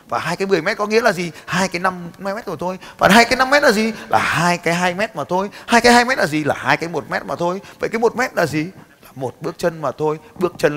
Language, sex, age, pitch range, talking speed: Vietnamese, male, 20-39, 135-195 Hz, 310 wpm